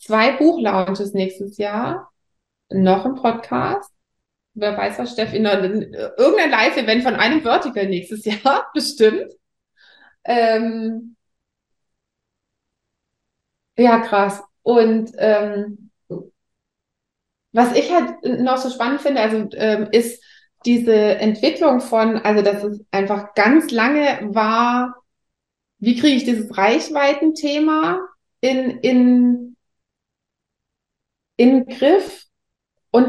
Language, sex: German, female